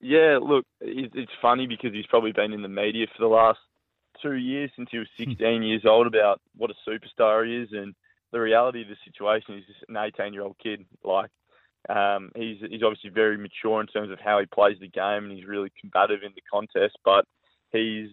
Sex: male